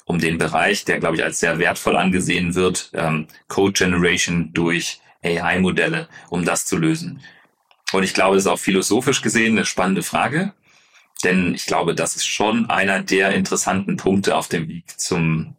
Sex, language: male, German